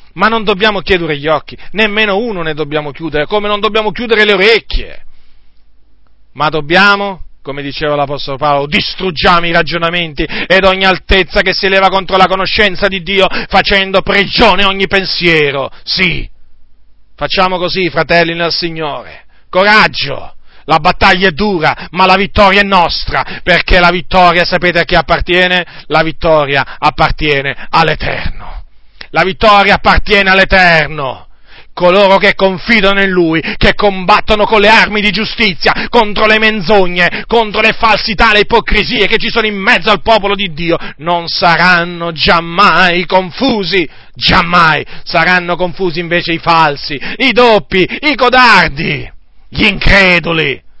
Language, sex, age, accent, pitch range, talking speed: Italian, male, 40-59, native, 165-205 Hz, 140 wpm